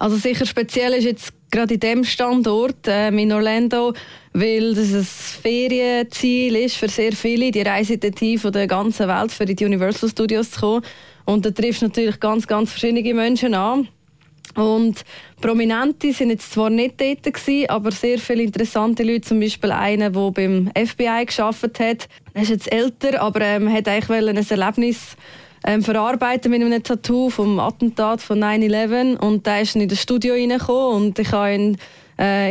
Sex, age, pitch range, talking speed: female, 20-39, 200-230 Hz, 175 wpm